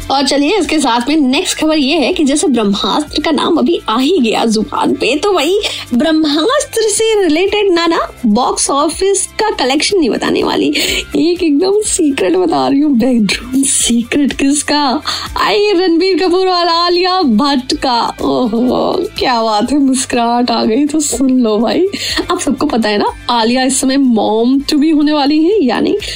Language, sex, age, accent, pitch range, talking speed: Hindi, female, 20-39, native, 265-365 Hz, 135 wpm